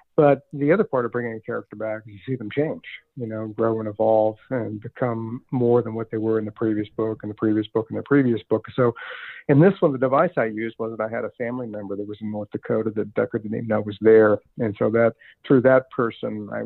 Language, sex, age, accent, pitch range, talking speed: English, male, 50-69, American, 105-120 Hz, 260 wpm